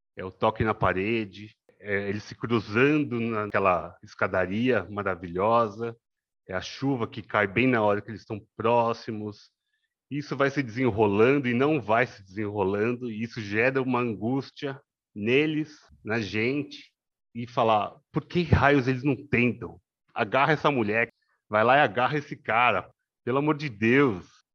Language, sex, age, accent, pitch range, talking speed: Portuguese, male, 30-49, Brazilian, 105-135 Hz, 150 wpm